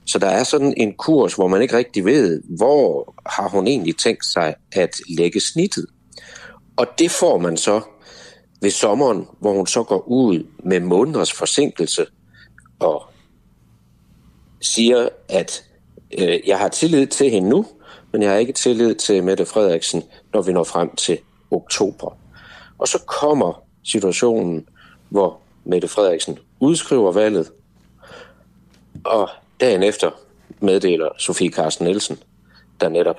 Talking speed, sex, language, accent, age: 140 wpm, male, Danish, native, 60-79